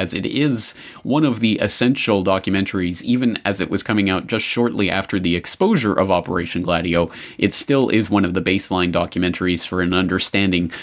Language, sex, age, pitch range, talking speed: English, male, 30-49, 90-120 Hz, 185 wpm